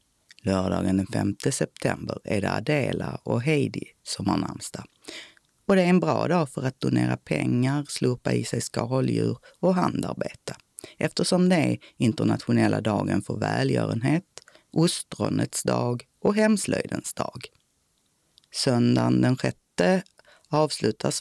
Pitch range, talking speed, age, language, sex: 100-150 Hz, 120 wpm, 30-49, Swedish, female